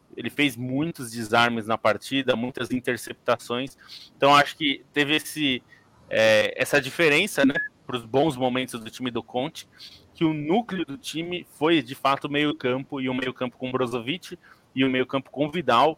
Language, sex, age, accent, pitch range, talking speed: Portuguese, male, 20-39, Brazilian, 120-145 Hz, 195 wpm